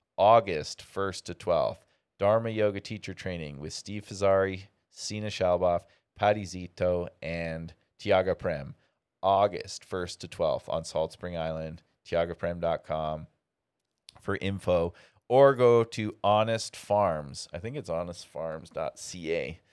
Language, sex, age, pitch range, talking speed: English, male, 30-49, 85-105 Hz, 115 wpm